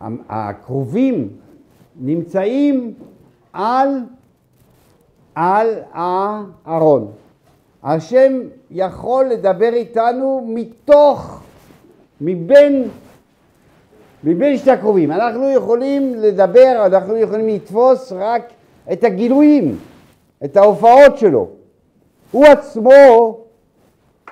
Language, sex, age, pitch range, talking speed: Hebrew, male, 60-79, 190-260 Hz, 75 wpm